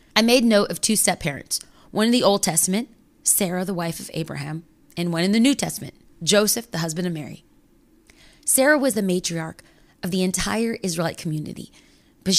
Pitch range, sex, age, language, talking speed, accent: 170-240 Hz, female, 20-39, English, 180 wpm, American